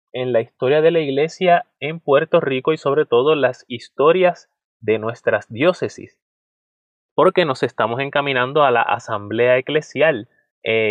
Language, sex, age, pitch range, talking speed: Spanish, male, 30-49, 120-165 Hz, 145 wpm